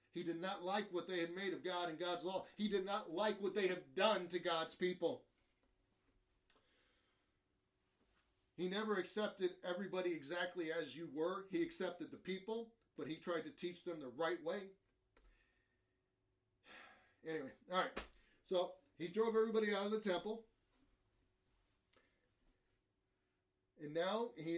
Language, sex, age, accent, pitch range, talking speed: English, male, 30-49, American, 160-195 Hz, 145 wpm